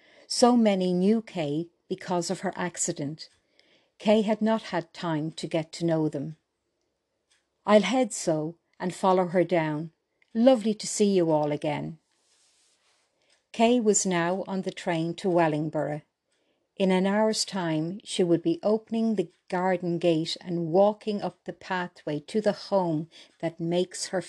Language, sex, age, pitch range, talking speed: English, female, 60-79, 160-190 Hz, 150 wpm